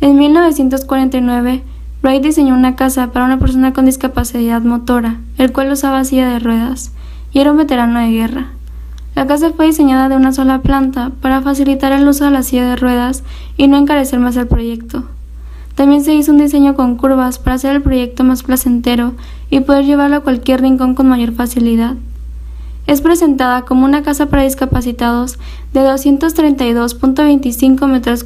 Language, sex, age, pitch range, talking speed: Spanish, female, 10-29, 245-280 Hz, 170 wpm